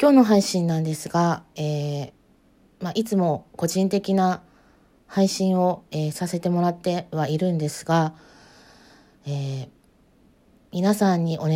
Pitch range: 160-205 Hz